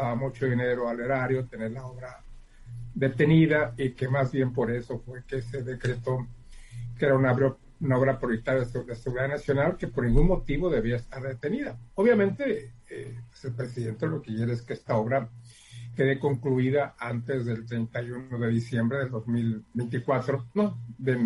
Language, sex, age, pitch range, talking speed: Spanish, male, 50-69, 120-145 Hz, 165 wpm